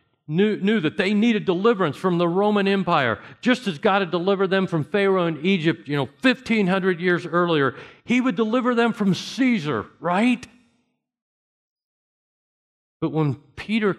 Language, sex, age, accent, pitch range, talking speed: English, male, 50-69, American, 115-175 Hz, 150 wpm